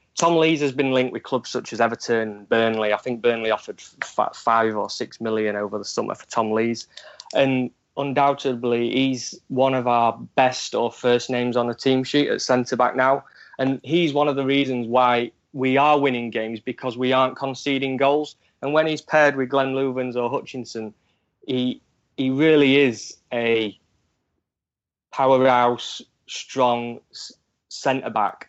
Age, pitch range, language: 20-39, 120-135 Hz, English